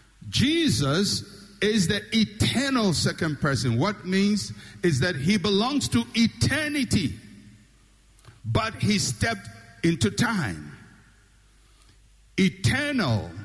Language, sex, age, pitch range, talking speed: English, male, 60-79, 120-195 Hz, 90 wpm